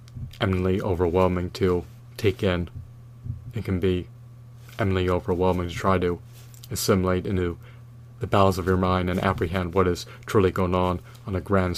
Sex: male